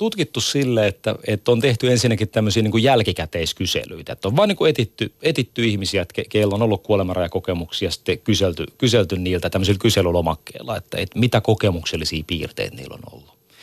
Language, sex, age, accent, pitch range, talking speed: Finnish, male, 30-49, native, 95-120 Hz, 165 wpm